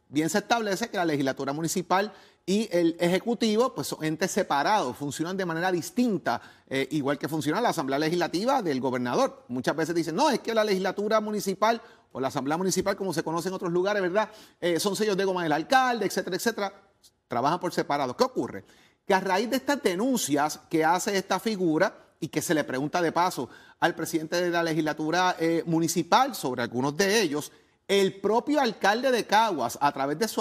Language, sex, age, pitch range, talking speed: Spanish, male, 30-49, 165-225 Hz, 195 wpm